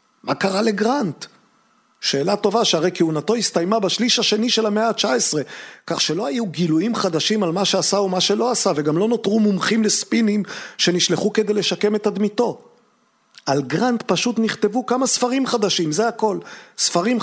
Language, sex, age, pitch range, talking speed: Hebrew, male, 40-59, 170-220 Hz, 155 wpm